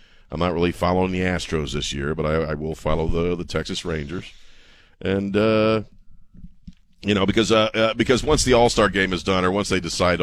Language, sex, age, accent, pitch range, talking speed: English, male, 50-69, American, 85-115 Hz, 205 wpm